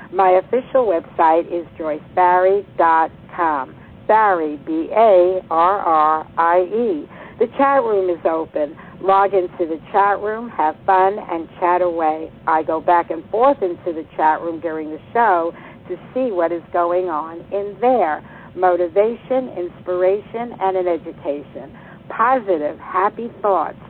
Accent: American